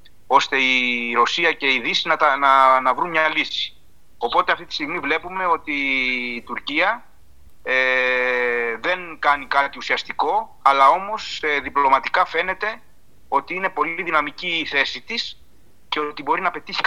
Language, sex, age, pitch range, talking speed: Greek, male, 30-49, 120-180 Hz, 155 wpm